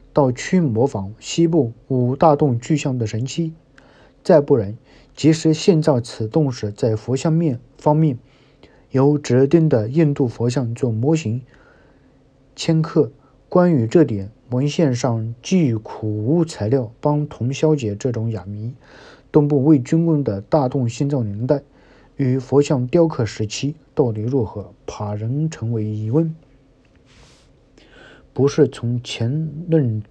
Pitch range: 120-150 Hz